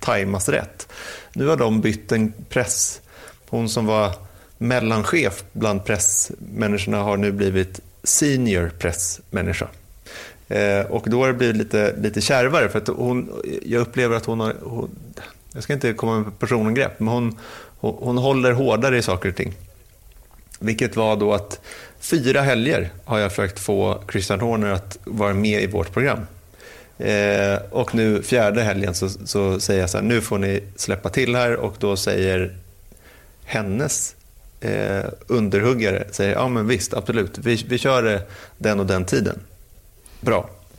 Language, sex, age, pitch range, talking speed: Swedish, male, 30-49, 100-120 Hz, 135 wpm